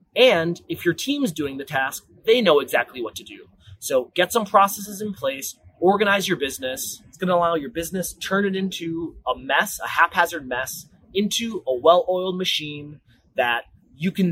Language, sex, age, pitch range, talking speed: English, male, 30-49, 140-185 Hz, 180 wpm